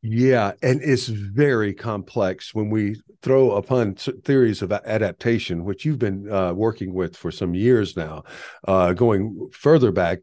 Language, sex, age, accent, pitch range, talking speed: English, male, 50-69, American, 95-115 Hz, 155 wpm